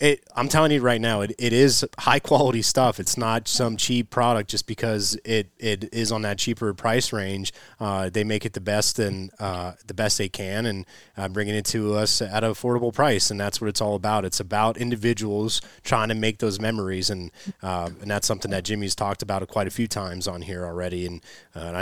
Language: English